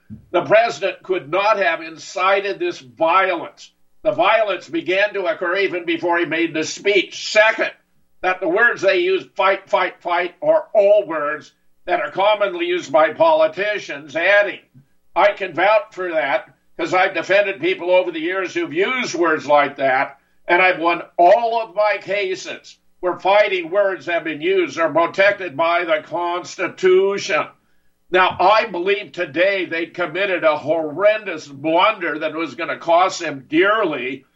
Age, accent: 60-79, American